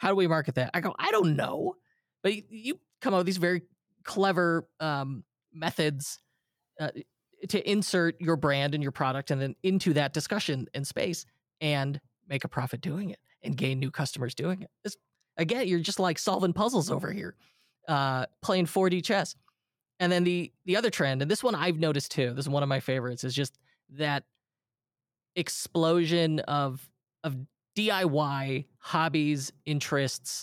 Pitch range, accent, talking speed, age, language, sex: 135-180 Hz, American, 170 wpm, 20-39, English, male